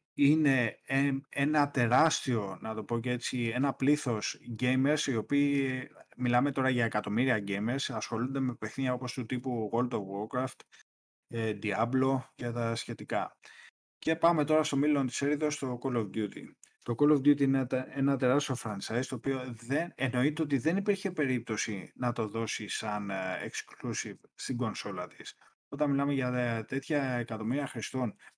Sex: male